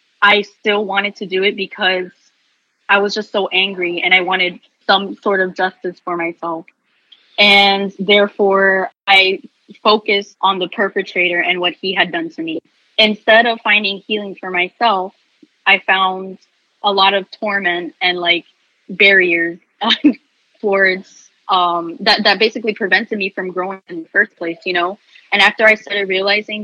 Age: 20-39